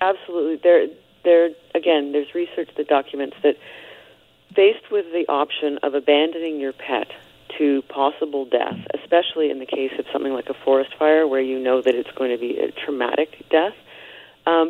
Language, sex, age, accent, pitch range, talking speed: English, female, 40-59, American, 140-165 Hz, 170 wpm